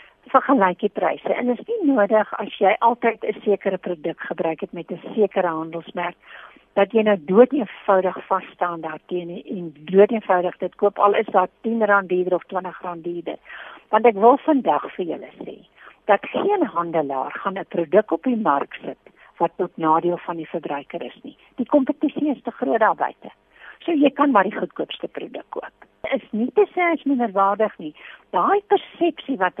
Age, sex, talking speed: 60-79, female, 185 wpm